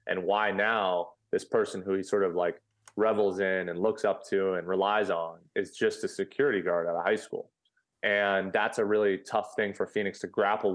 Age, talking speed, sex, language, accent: 20-39, 210 wpm, male, English, American